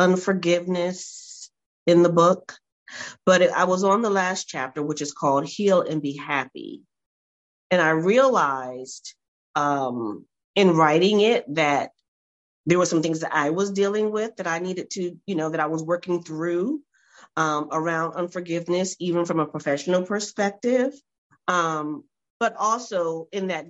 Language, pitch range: English, 155-190 Hz